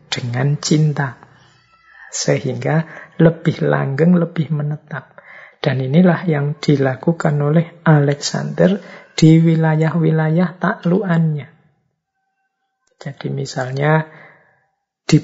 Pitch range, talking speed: 140-165 Hz, 75 wpm